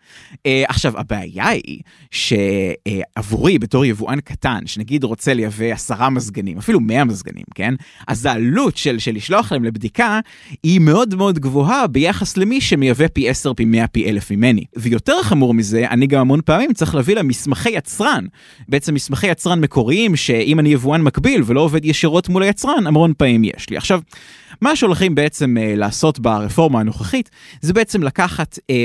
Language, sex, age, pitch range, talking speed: Hebrew, male, 20-39, 120-170 Hz, 165 wpm